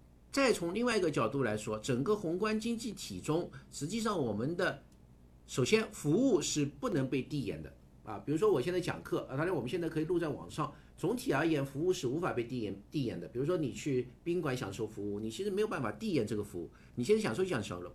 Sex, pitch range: male, 115-175 Hz